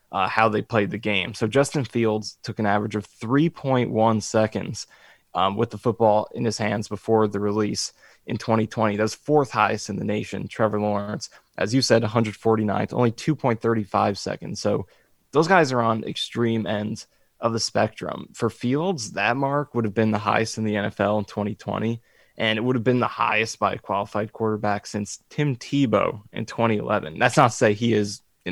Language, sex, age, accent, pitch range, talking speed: English, male, 20-39, American, 105-120 Hz, 185 wpm